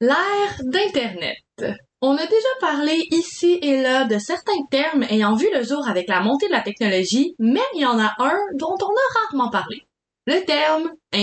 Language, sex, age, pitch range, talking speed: French, female, 20-39, 225-295 Hz, 190 wpm